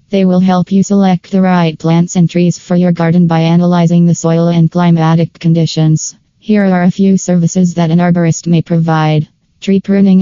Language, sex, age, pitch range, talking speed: English, female, 20-39, 165-180 Hz, 190 wpm